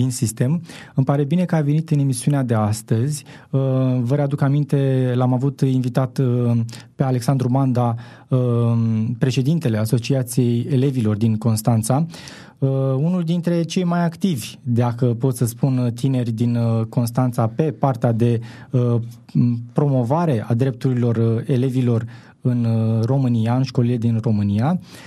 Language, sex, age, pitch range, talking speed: Romanian, male, 20-39, 120-145 Hz, 120 wpm